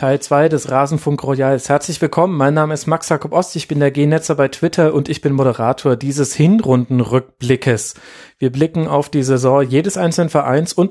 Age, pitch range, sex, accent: 40-59, 130-160 Hz, male, German